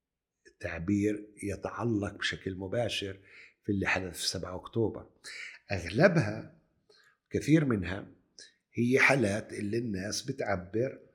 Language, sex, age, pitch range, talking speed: Arabic, male, 60-79, 100-135 Hz, 95 wpm